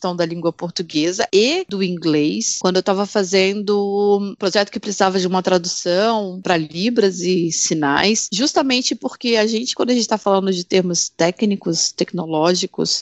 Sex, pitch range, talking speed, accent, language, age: female, 180-225 Hz, 155 wpm, Brazilian, Portuguese, 30-49